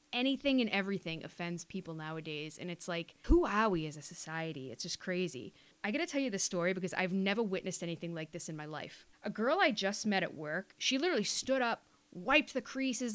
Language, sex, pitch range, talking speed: English, female, 185-270 Hz, 225 wpm